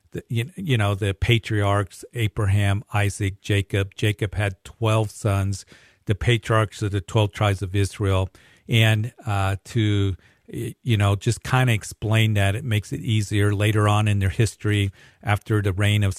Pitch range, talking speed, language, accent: 95-110 Hz, 155 wpm, English, American